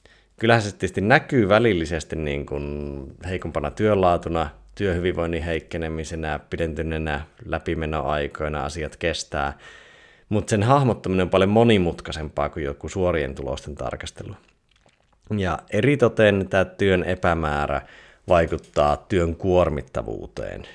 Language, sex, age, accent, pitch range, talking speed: Finnish, male, 30-49, native, 80-105 Hz, 90 wpm